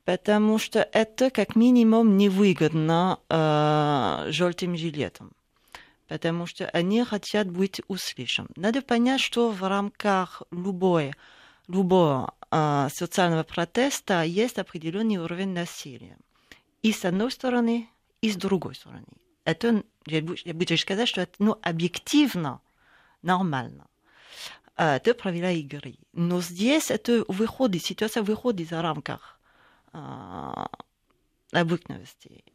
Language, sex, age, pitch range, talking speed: Russian, female, 40-59, 170-220 Hz, 105 wpm